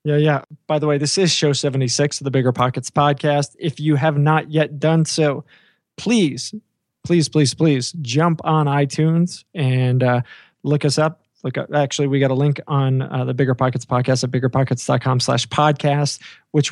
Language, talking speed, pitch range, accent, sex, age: English, 185 wpm, 135-155 Hz, American, male, 20-39